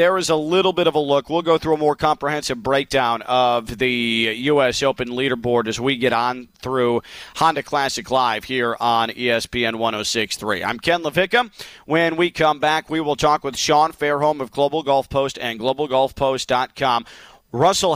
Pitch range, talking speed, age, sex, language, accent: 125-155 Hz, 175 wpm, 40-59, male, English, American